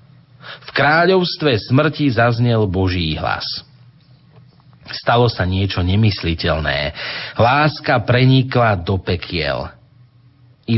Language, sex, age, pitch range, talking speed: Slovak, male, 40-59, 105-135 Hz, 85 wpm